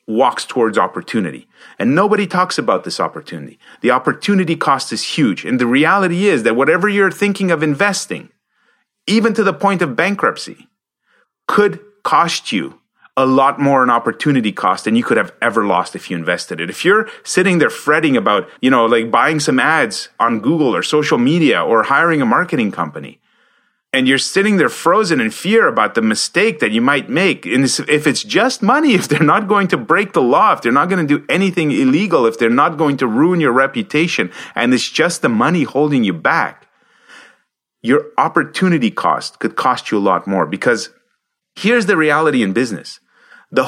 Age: 30-49